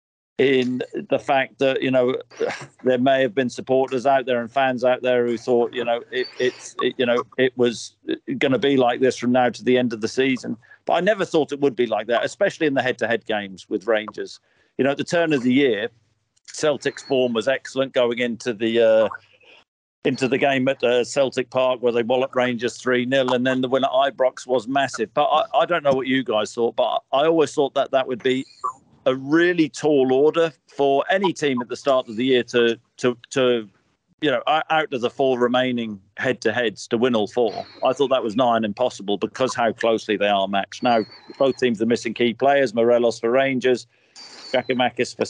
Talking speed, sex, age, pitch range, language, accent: 215 wpm, male, 50-69, 120-140 Hz, English, British